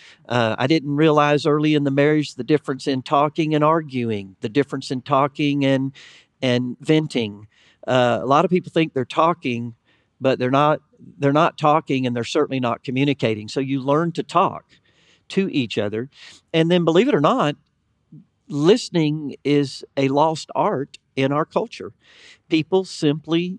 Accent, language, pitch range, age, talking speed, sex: American, English, 125-155 Hz, 50-69, 165 wpm, male